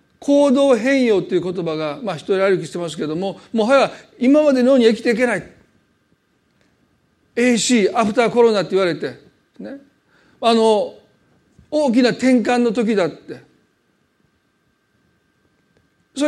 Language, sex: Japanese, male